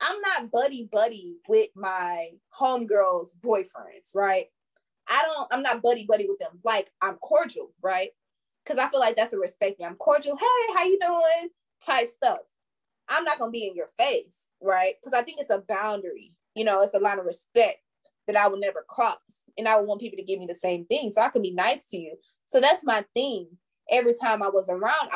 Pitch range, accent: 205-325 Hz, American